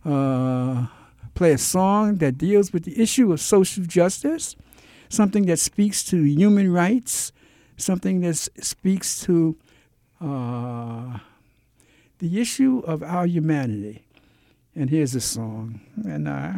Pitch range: 125-165 Hz